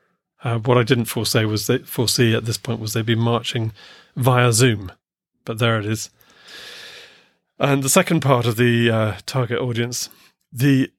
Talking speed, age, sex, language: 170 wpm, 40-59, male, English